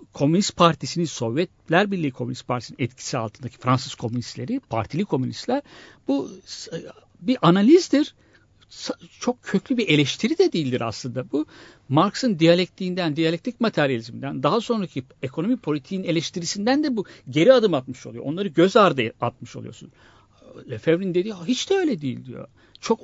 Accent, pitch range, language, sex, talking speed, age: native, 130-200 Hz, Turkish, male, 135 wpm, 60-79